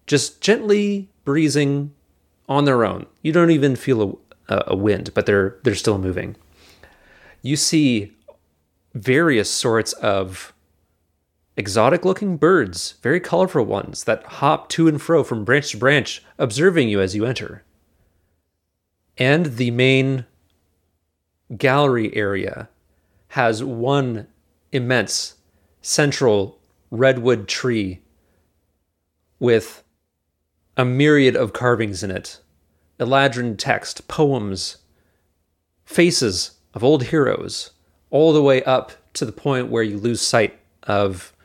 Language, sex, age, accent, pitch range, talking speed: English, male, 30-49, American, 85-130 Hz, 115 wpm